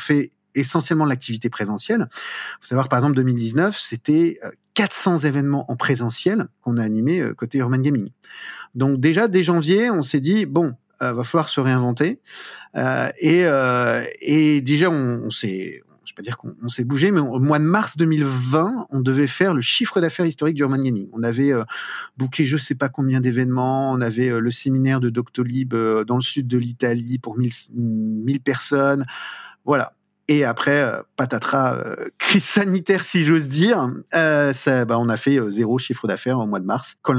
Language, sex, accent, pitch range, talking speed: French, male, French, 120-160 Hz, 190 wpm